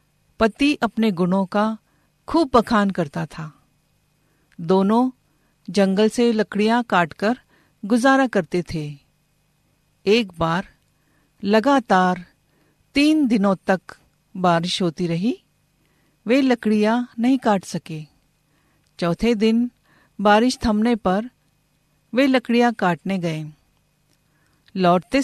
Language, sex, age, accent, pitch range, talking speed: Hindi, female, 50-69, native, 160-240 Hz, 95 wpm